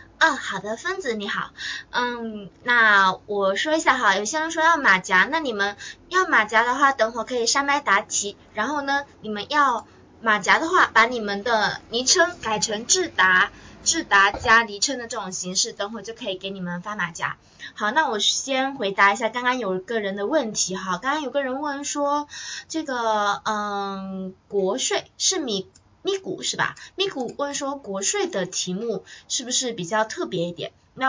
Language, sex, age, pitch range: Chinese, female, 20-39, 195-265 Hz